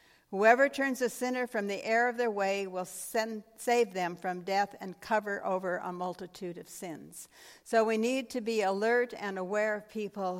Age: 60-79